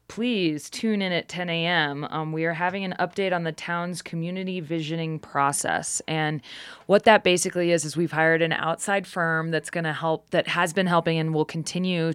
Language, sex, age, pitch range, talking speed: English, female, 20-39, 150-180 Hz, 195 wpm